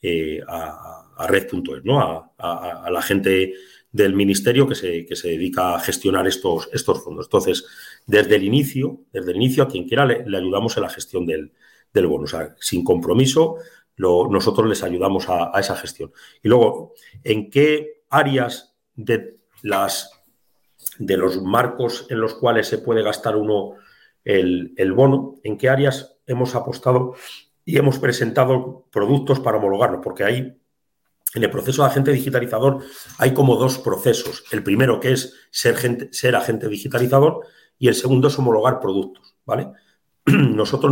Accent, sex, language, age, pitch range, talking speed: Spanish, male, Spanish, 40-59, 115-140 Hz, 165 wpm